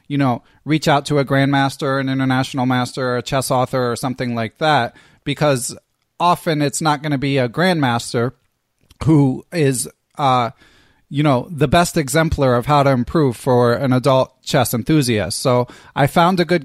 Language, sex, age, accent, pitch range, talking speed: English, male, 20-39, American, 130-160 Hz, 180 wpm